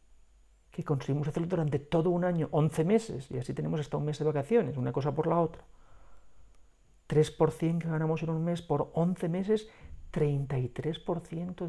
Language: Spanish